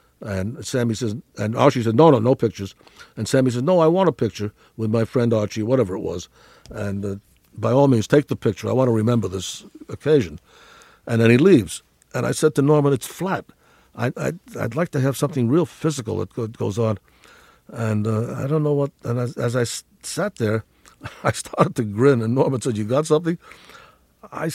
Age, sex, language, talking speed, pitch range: 60-79, male, English, 210 wpm, 115-160 Hz